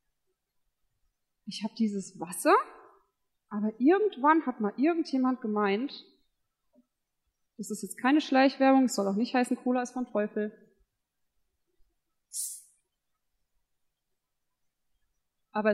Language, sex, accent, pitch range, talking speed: German, female, German, 195-270 Hz, 95 wpm